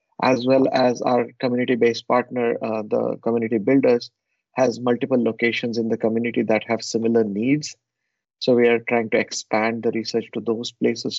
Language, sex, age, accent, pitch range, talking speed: English, male, 30-49, Indian, 110-125 Hz, 165 wpm